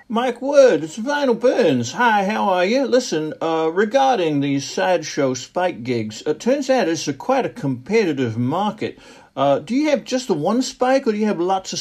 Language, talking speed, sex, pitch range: English, 195 wpm, male, 135-195 Hz